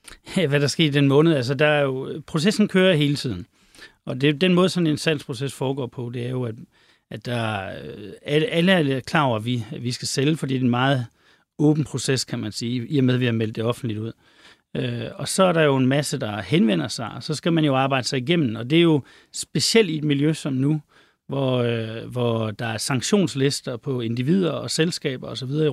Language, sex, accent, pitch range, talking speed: Danish, male, native, 125-155 Hz, 235 wpm